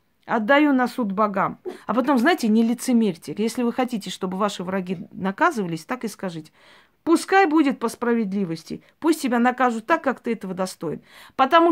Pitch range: 215-300 Hz